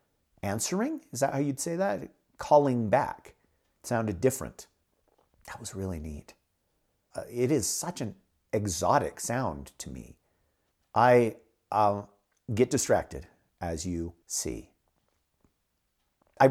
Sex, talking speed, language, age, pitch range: male, 120 wpm, English, 50-69, 95-130 Hz